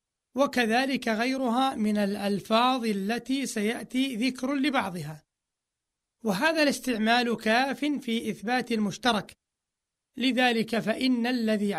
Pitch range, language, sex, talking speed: 215-255 Hz, Arabic, male, 85 wpm